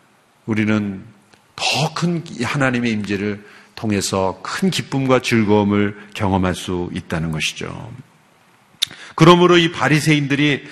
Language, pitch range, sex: Korean, 115-185 Hz, male